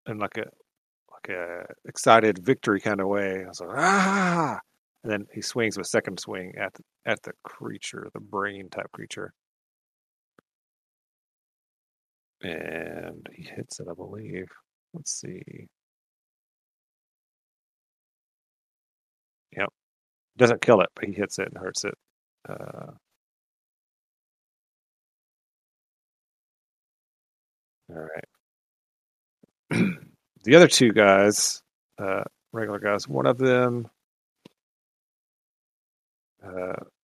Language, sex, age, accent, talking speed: English, male, 30-49, American, 100 wpm